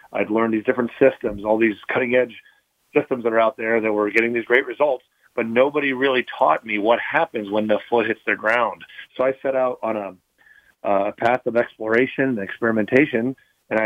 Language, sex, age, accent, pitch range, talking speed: English, male, 40-59, American, 105-120 Hz, 200 wpm